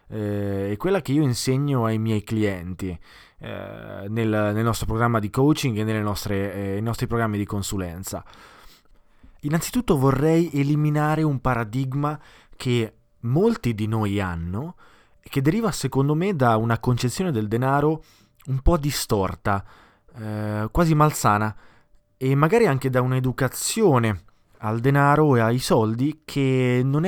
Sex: male